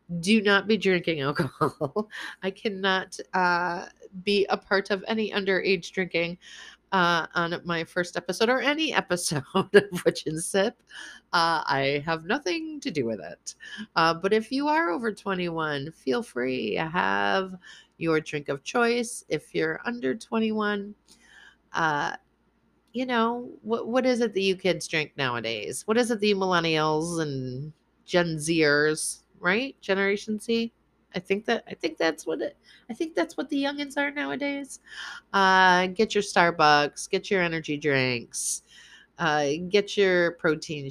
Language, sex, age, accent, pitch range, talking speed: English, female, 30-49, American, 145-205 Hz, 155 wpm